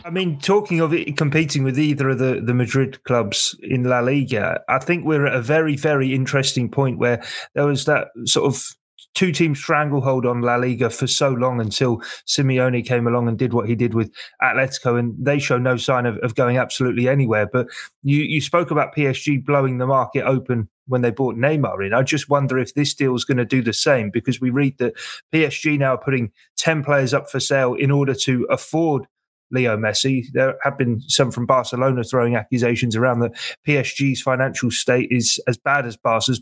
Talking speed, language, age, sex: 205 wpm, English, 30-49, male